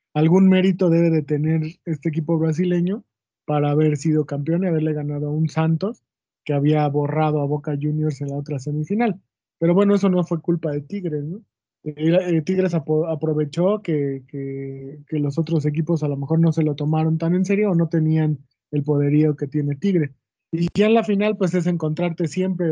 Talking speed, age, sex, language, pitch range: 200 wpm, 20-39, male, Spanish, 150-175 Hz